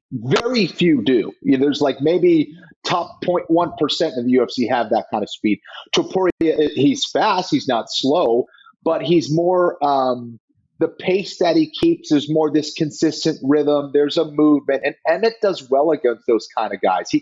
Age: 30-49